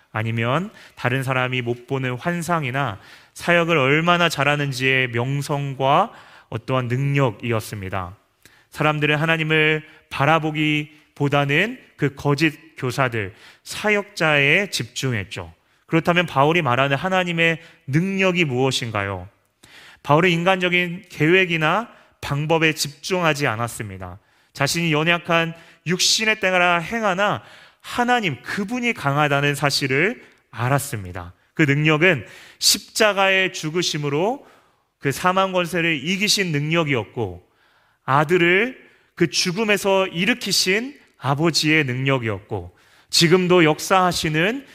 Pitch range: 130-175 Hz